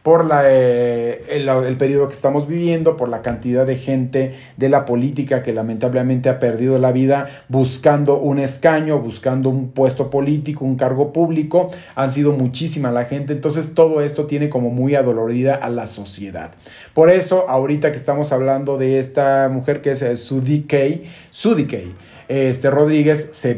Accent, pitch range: Mexican, 130-150 Hz